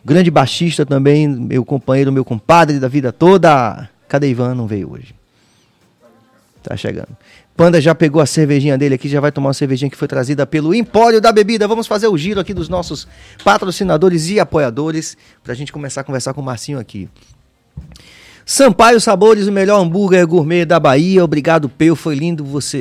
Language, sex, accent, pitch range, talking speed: Portuguese, male, Brazilian, 130-170 Hz, 180 wpm